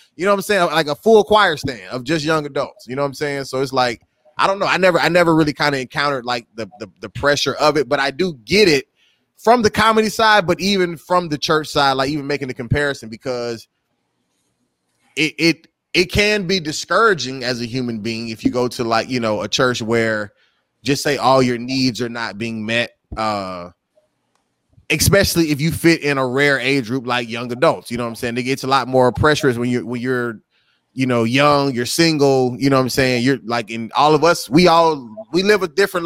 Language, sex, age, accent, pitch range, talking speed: English, male, 20-39, American, 120-155 Hz, 230 wpm